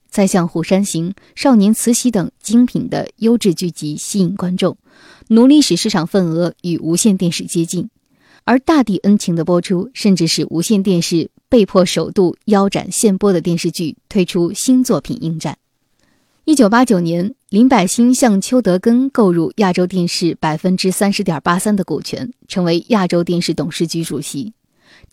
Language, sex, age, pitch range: Chinese, female, 20-39, 170-220 Hz